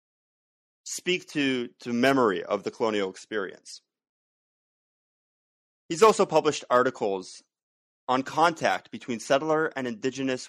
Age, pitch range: 30-49, 105-135 Hz